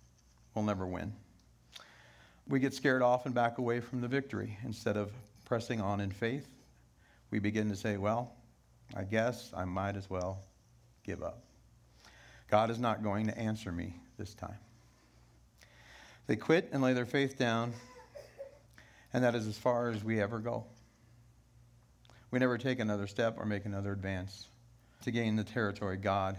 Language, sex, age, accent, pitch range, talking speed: English, male, 50-69, American, 105-120 Hz, 160 wpm